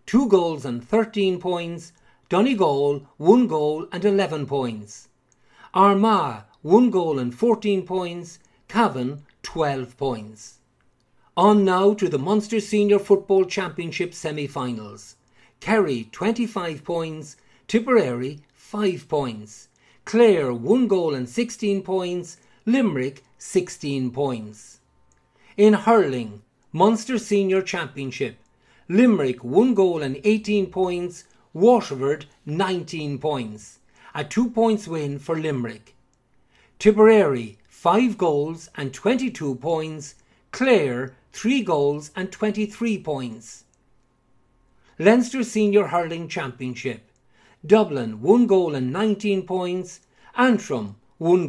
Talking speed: 105 wpm